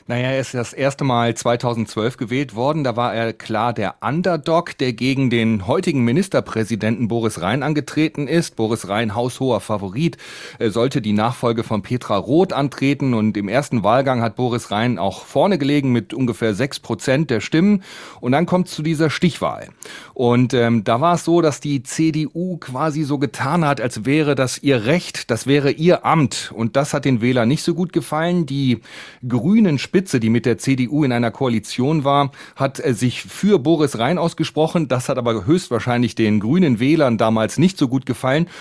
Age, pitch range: 40-59, 120-155 Hz